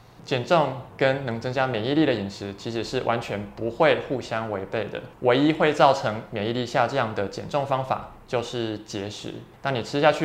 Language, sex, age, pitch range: Chinese, male, 20-39, 105-130 Hz